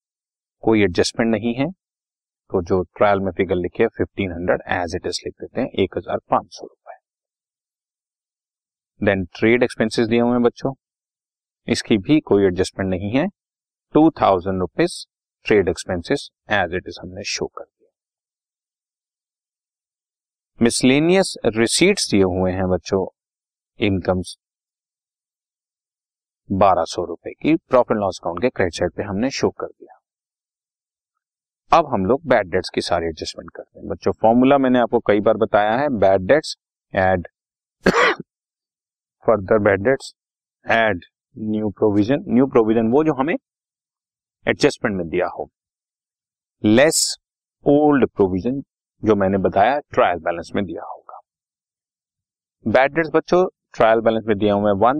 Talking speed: 125 wpm